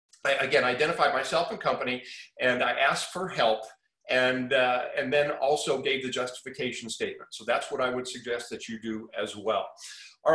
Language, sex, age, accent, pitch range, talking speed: English, male, 40-59, American, 125-170 Hz, 190 wpm